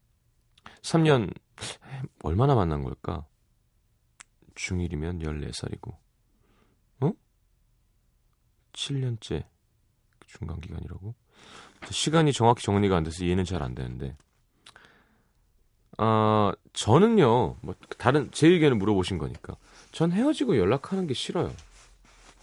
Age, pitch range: 30-49, 90-140 Hz